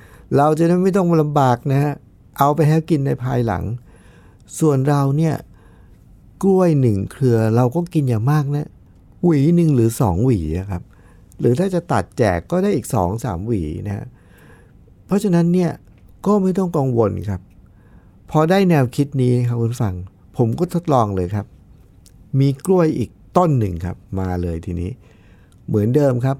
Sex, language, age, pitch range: male, Thai, 60-79, 95-145 Hz